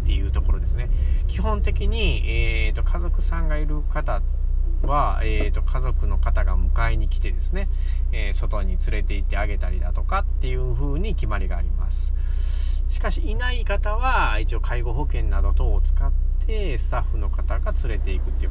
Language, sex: Japanese, male